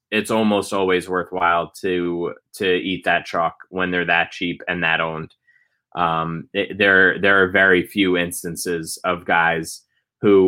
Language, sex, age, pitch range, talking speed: English, male, 20-39, 90-100 Hz, 155 wpm